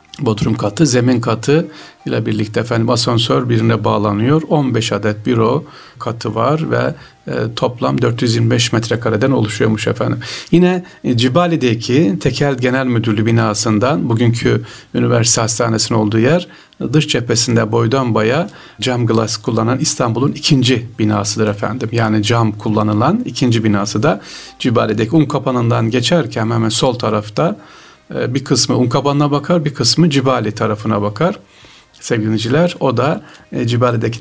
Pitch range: 110-135 Hz